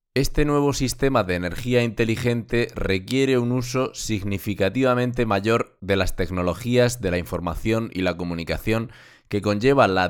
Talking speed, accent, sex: 135 wpm, Spanish, male